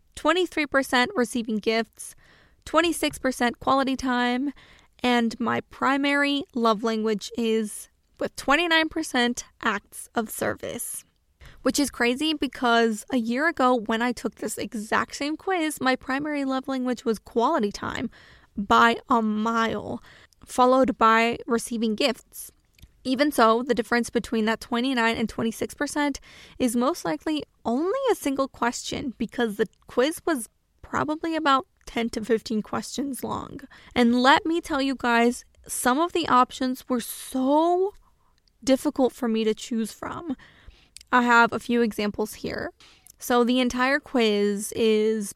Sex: female